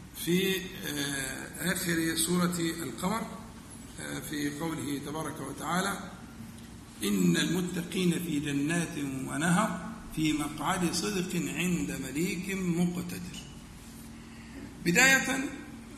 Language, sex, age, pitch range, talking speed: Arabic, male, 50-69, 155-195 Hz, 85 wpm